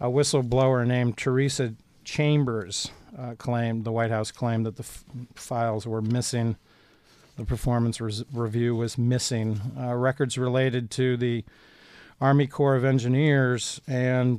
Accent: American